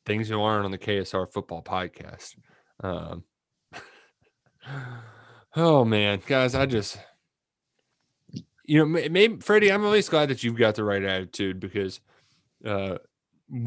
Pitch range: 100-130 Hz